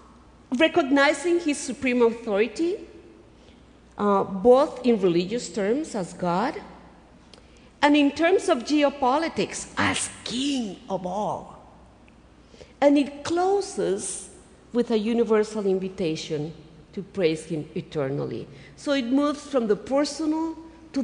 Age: 50-69